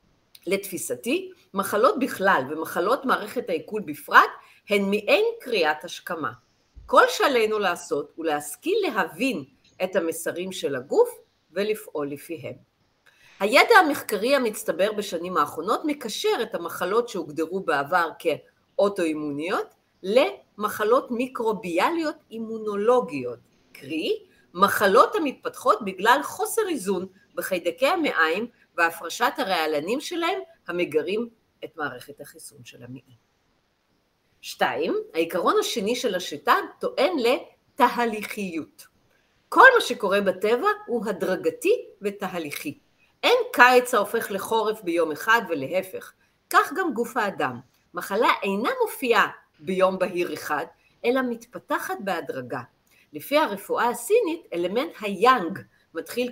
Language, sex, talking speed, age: Hebrew, female, 100 wpm, 40-59